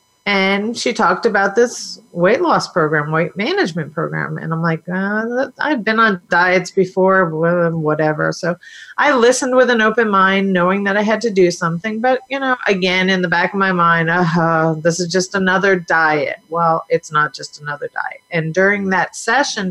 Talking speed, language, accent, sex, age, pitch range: 190 wpm, English, American, female, 40-59, 170-245 Hz